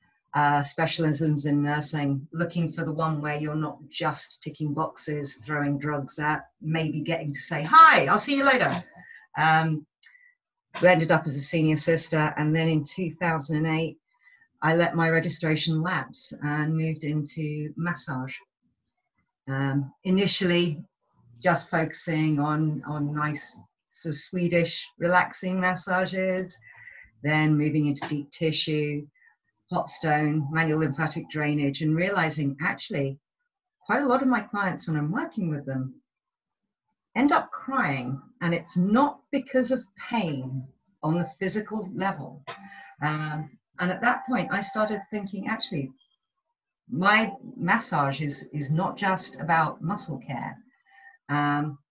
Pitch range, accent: 150-190 Hz, British